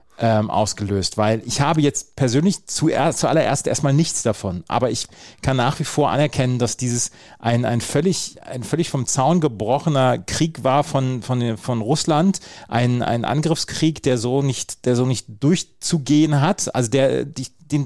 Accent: German